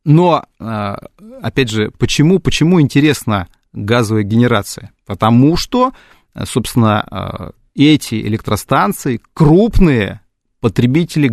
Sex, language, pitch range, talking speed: male, Russian, 110-145 Hz, 80 wpm